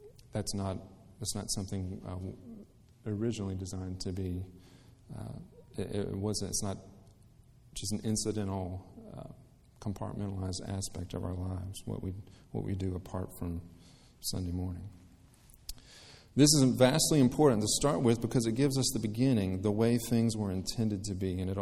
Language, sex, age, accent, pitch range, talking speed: English, male, 40-59, American, 95-115 Hz, 155 wpm